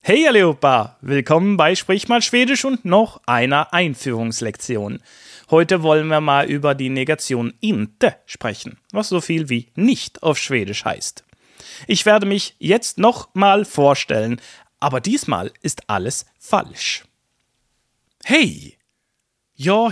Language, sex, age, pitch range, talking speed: German, male, 30-49, 120-195 Hz, 125 wpm